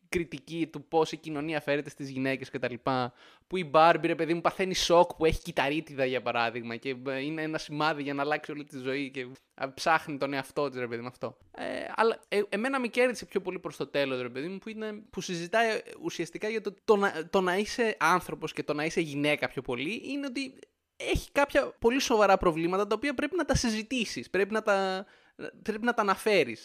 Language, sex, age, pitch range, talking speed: Greek, male, 20-39, 135-190 Hz, 200 wpm